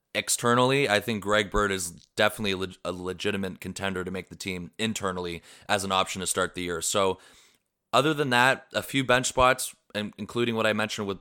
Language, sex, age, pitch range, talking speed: English, male, 20-39, 95-110 Hz, 195 wpm